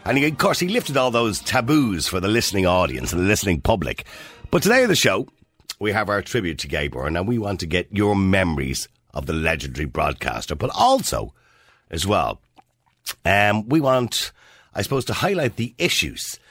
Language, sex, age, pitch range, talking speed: English, male, 50-69, 80-125 Hz, 185 wpm